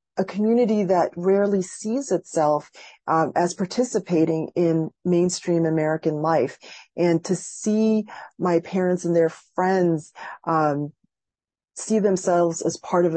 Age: 40-59